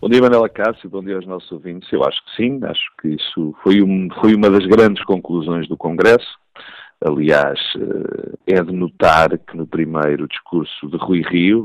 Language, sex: Portuguese, male